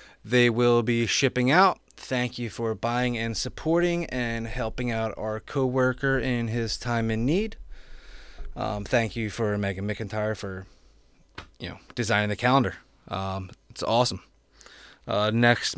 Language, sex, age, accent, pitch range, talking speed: English, male, 20-39, American, 115-150 Hz, 145 wpm